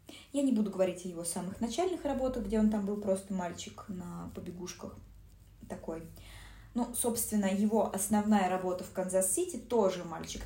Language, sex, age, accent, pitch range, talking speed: Russian, female, 20-39, native, 170-220 Hz, 155 wpm